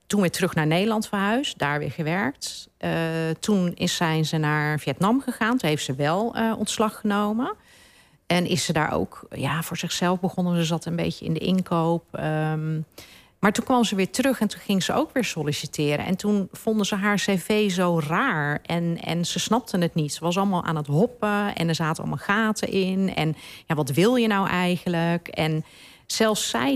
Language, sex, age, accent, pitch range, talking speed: Dutch, female, 40-59, Dutch, 160-210 Hz, 200 wpm